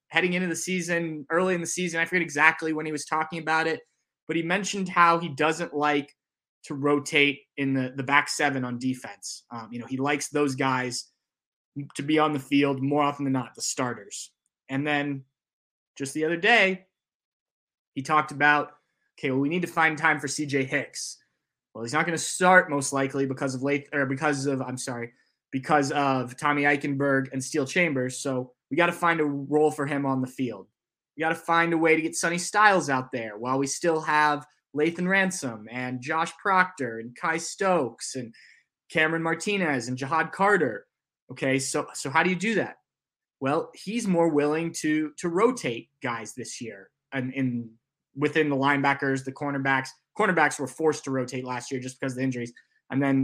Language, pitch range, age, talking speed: English, 135-165 Hz, 20-39, 195 wpm